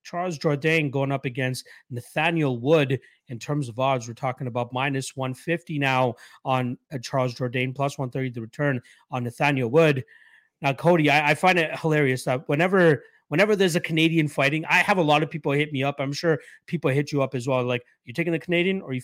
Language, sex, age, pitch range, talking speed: English, male, 30-49, 125-150 Hz, 210 wpm